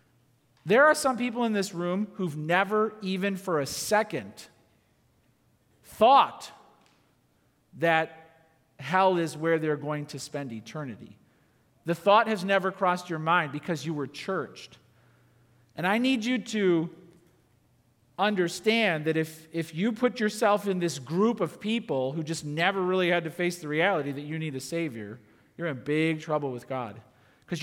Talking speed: 155 wpm